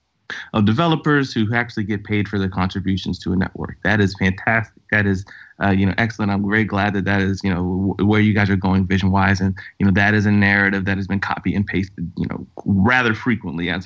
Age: 30-49